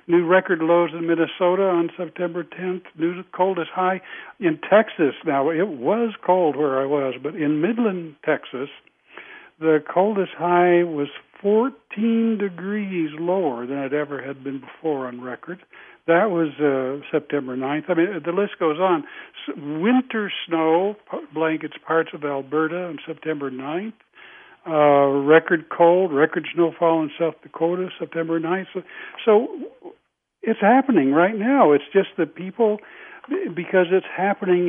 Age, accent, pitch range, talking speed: 60-79, American, 145-185 Hz, 140 wpm